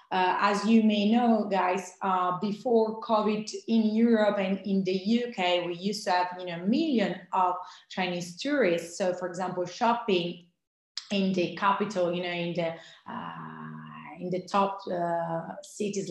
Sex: female